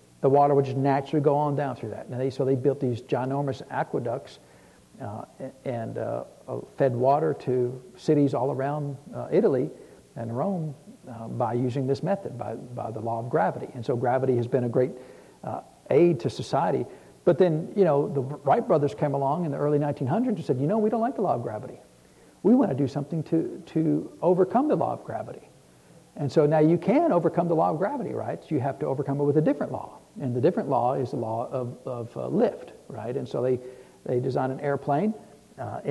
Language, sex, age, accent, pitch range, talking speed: English, male, 60-79, American, 130-155 Hz, 215 wpm